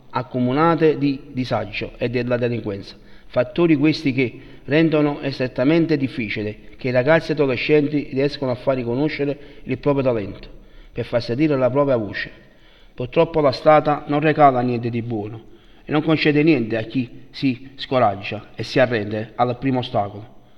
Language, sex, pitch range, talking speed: Italian, male, 120-150 Hz, 150 wpm